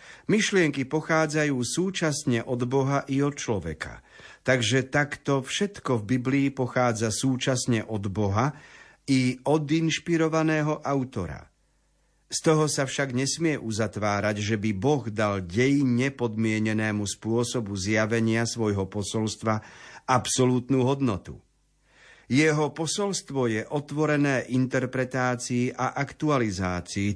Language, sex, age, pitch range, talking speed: Slovak, male, 50-69, 110-140 Hz, 100 wpm